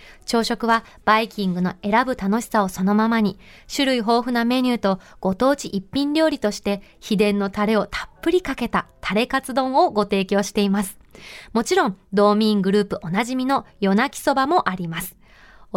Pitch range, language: 200-235 Hz, Japanese